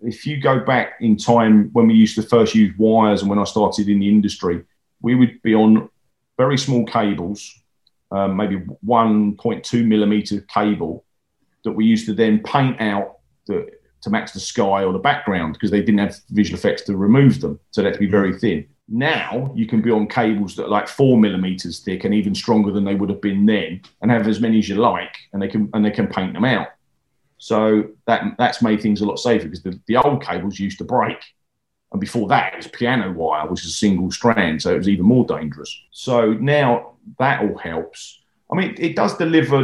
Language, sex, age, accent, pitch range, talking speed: English, male, 40-59, British, 100-115 Hz, 215 wpm